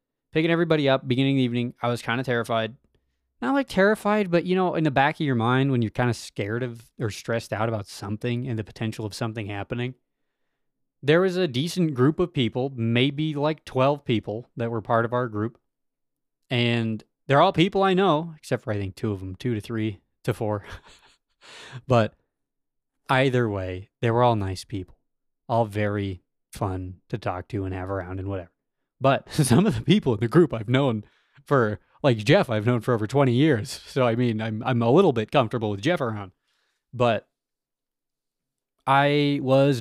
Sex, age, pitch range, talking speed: male, 20-39, 110-140 Hz, 195 wpm